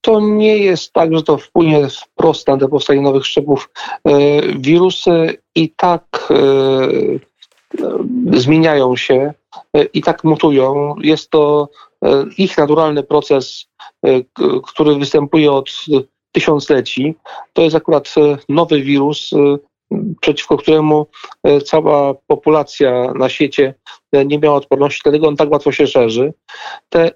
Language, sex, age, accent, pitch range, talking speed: Polish, male, 40-59, native, 140-170 Hz, 115 wpm